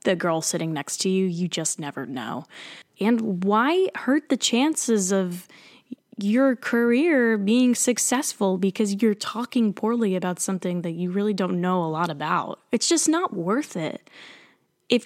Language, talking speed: English, 160 wpm